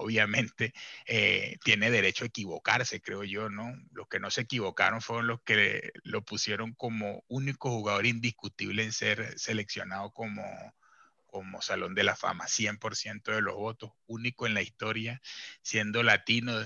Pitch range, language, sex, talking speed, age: 100-120 Hz, Spanish, male, 150 wpm, 30-49